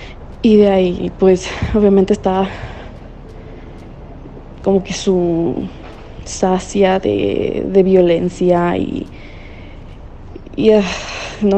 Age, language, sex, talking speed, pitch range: 20-39, Spanish, female, 85 wpm, 175-205 Hz